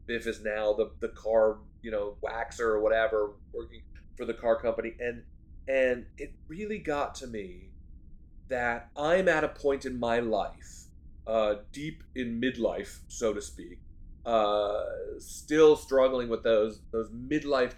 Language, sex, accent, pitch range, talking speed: English, male, American, 105-145 Hz, 150 wpm